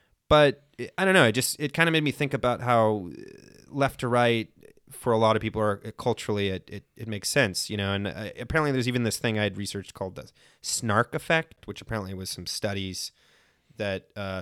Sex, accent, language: male, American, English